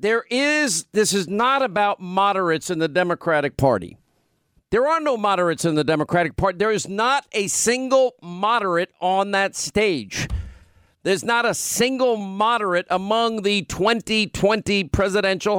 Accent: American